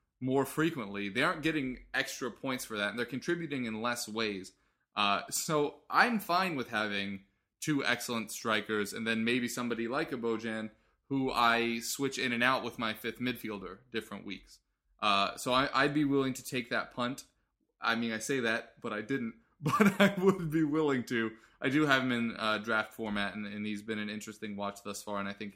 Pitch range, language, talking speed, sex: 110-135 Hz, English, 205 wpm, male